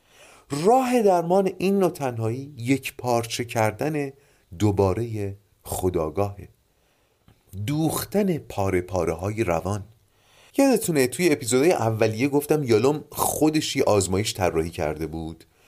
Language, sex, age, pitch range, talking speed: Persian, male, 40-59, 100-145 Hz, 95 wpm